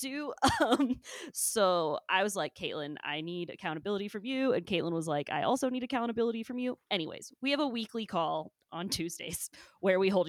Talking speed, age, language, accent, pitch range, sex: 190 wpm, 20-39, English, American, 165-205 Hz, female